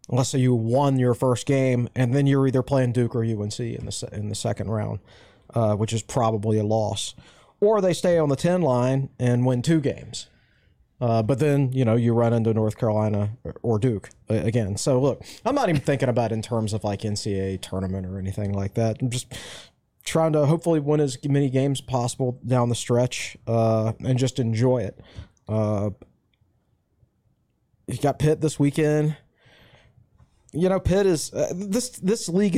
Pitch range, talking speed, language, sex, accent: 110-145 Hz, 190 wpm, English, male, American